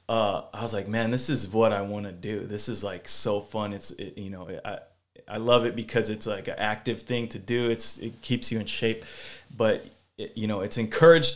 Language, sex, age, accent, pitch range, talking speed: English, male, 20-39, American, 100-120 Hz, 240 wpm